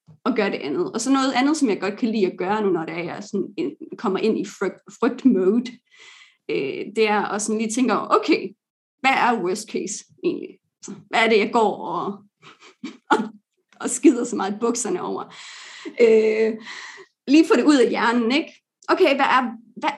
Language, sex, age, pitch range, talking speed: English, female, 30-49, 205-325 Hz, 165 wpm